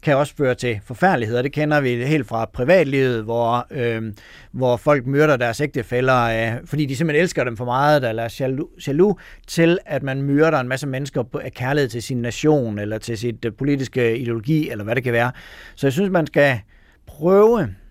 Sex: male